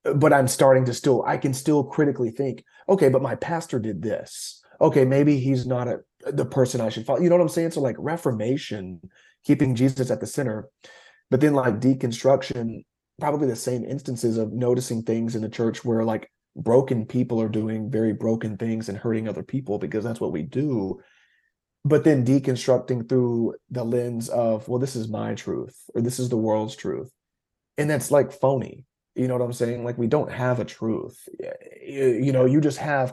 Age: 30-49